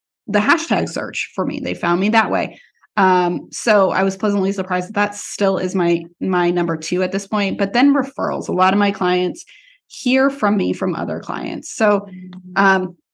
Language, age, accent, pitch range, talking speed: English, 20-39, American, 185-225 Hz, 195 wpm